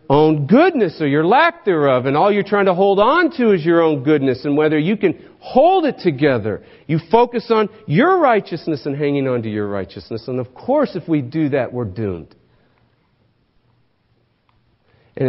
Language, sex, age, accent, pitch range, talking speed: English, male, 50-69, American, 110-145 Hz, 180 wpm